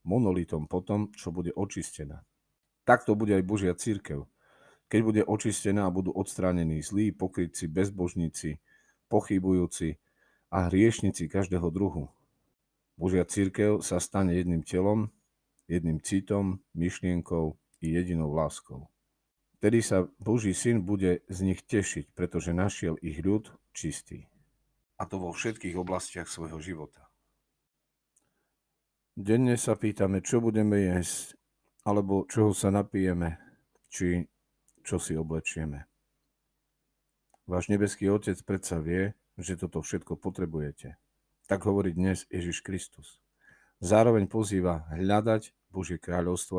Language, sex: Slovak, male